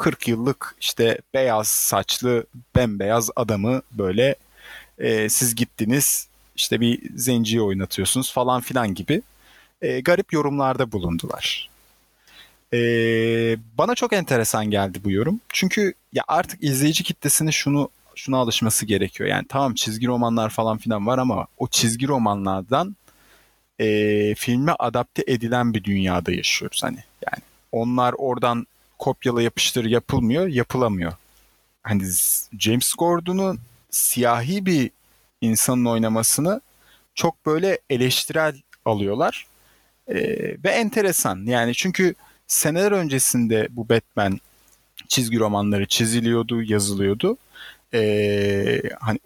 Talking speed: 110 wpm